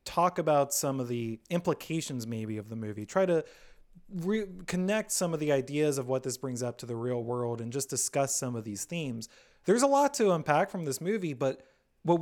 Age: 30-49